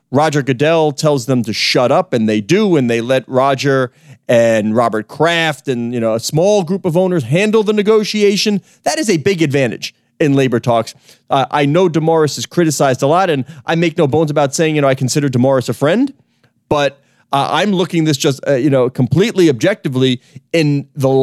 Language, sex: English, male